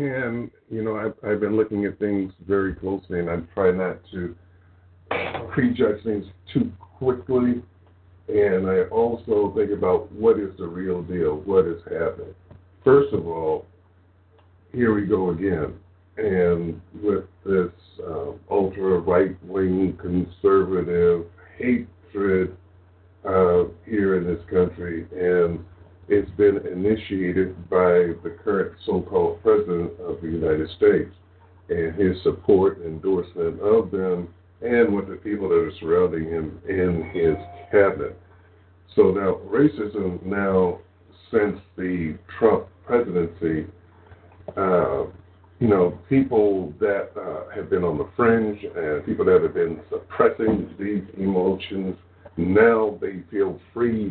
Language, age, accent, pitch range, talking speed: English, 50-69, American, 90-110 Hz, 130 wpm